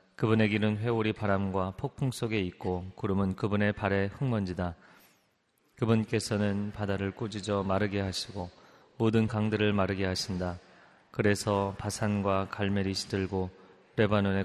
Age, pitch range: 30-49, 95-115 Hz